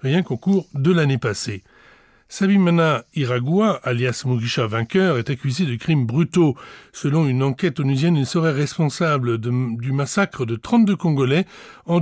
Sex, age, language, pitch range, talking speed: male, 60-79, French, 125-165 Hz, 150 wpm